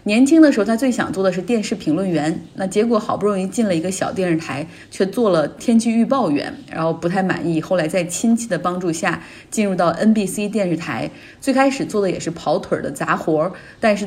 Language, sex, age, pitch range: Chinese, female, 30-49, 170-230 Hz